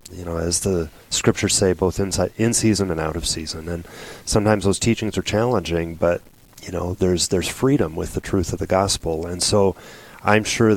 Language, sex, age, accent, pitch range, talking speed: English, male, 30-49, American, 85-105 Hz, 200 wpm